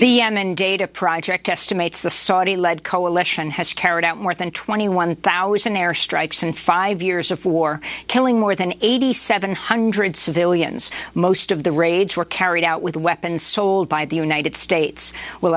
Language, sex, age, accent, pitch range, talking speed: English, female, 50-69, American, 155-190 Hz, 155 wpm